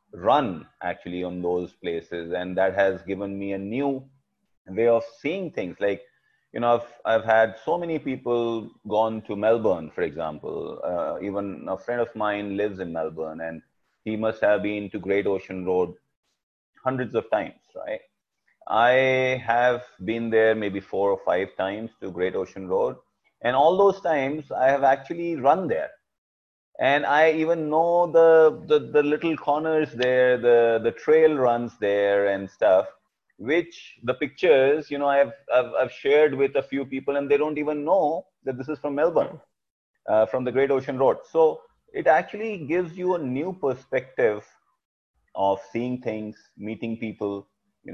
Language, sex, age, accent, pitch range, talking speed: English, male, 30-49, Indian, 105-150 Hz, 170 wpm